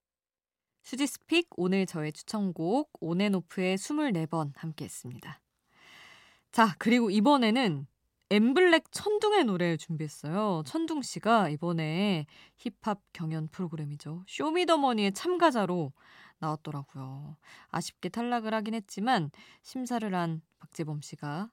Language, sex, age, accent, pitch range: Korean, female, 20-39, native, 160-210 Hz